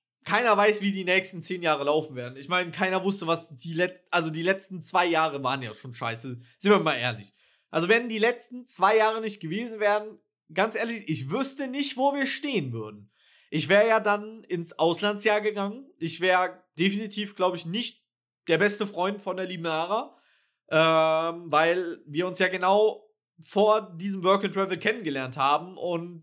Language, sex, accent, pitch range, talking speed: German, male, German, 160-215 Hz, 180 wpm